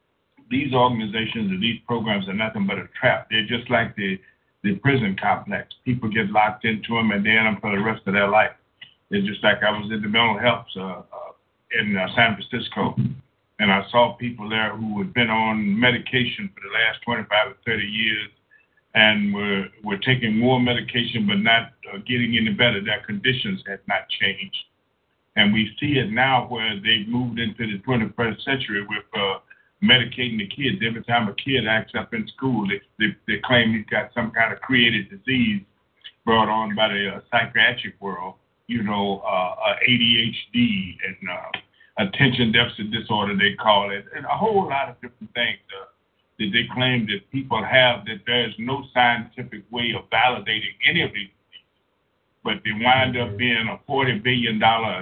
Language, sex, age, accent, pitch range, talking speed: English, male, 60-79, American, 105-125 Hz, 185 wpm